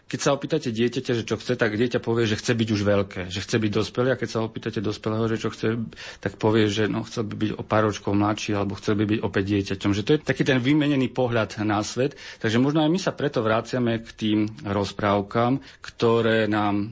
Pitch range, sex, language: 105-120 Hz, male, Slovak